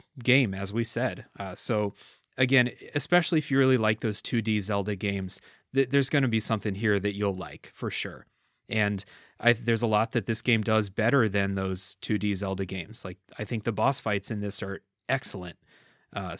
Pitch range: 105-130 Hz